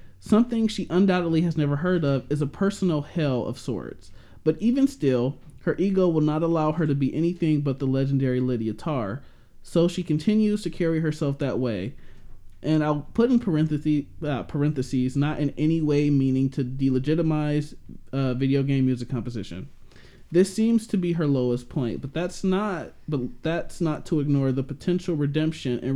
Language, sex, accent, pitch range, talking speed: English, male, American, 125-160 Hz, 175 wpm